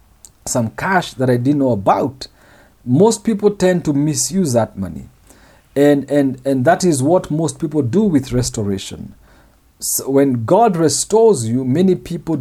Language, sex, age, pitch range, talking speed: English, male, 50-69, 115-155 Hz, 145 wpm